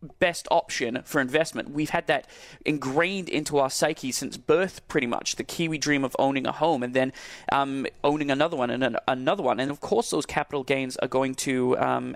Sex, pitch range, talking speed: male, 135-170 Hz, 205 wpm